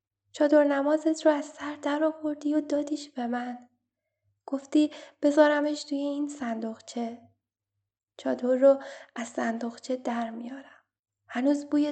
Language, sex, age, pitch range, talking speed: Persian, female, 10-29, 220-275 Hz, 115 wpm